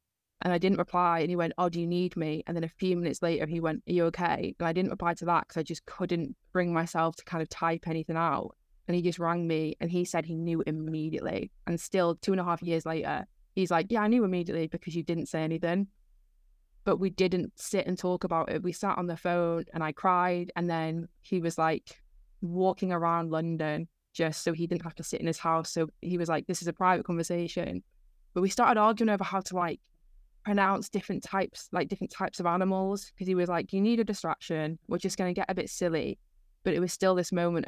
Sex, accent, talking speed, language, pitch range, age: female, British, 240 wpm, English, 165-180 Hz, 20-39